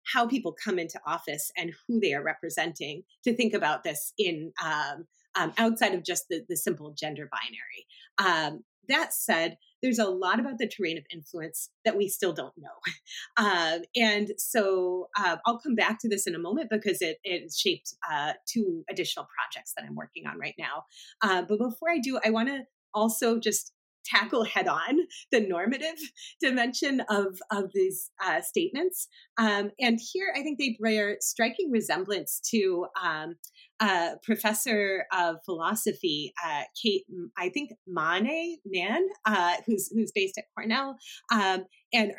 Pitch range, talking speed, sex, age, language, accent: 180-240 Hz, 165 wpm, female, 30-49, English, American